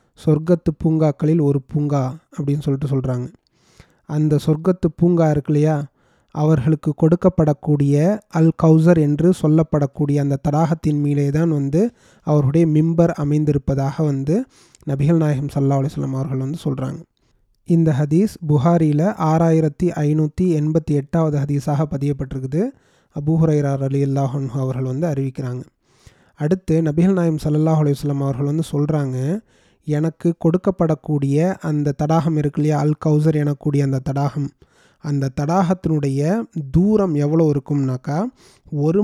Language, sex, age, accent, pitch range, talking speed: Tamil, male, 30-49, native, 145-170 Hz, 110 wpm